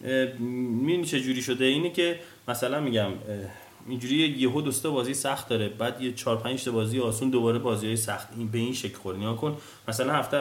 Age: 20-39